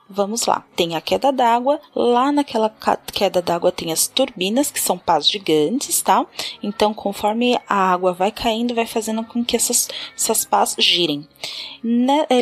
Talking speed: 165 wpm